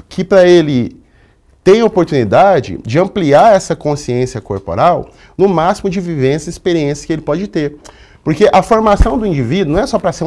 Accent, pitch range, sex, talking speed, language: Brazilian, 120-190 Hz, male, 175 wpm, Portuguese